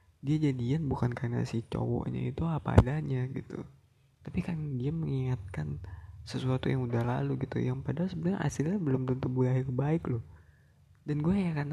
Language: Indonesian